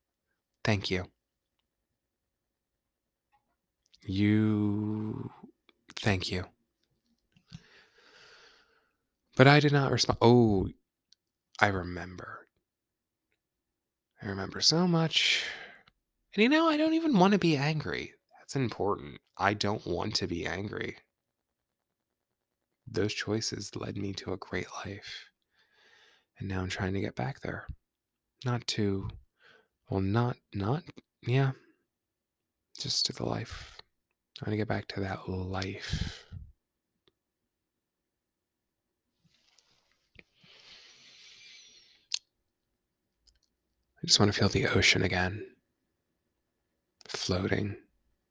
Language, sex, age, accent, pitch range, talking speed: English, male, 20-39, American, 95-120 Hz, 95 wpm